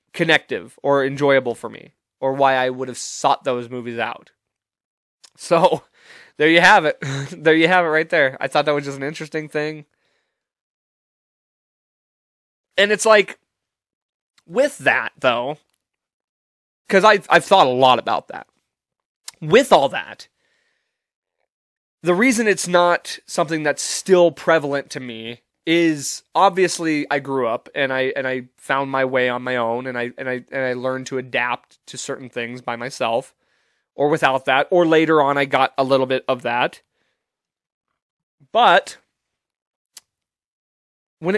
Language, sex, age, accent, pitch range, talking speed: English, male, 20-39, American, 130-165 Hz, 150 wpm